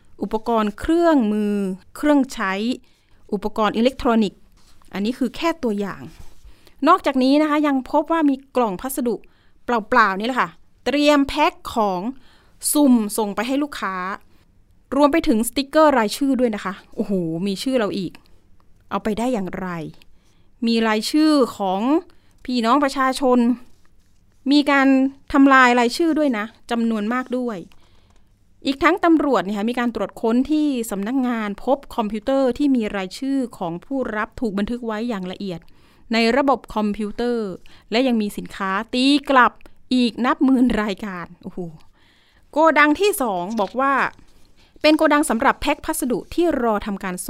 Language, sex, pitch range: Thai, female, 210-275 Hz